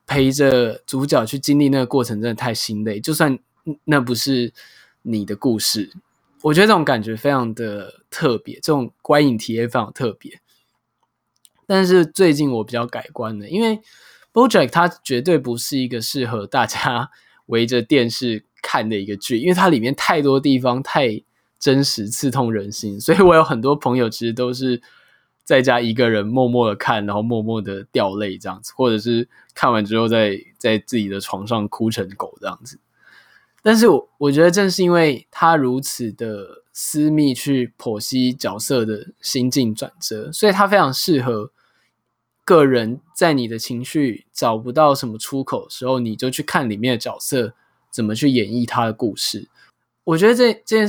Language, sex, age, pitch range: Chinese, male, 20-39, 115-150 Hz